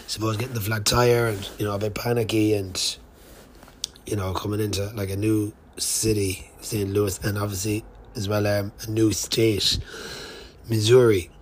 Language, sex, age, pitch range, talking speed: English, male, 20-39, 95-110 Hz, 165 wpm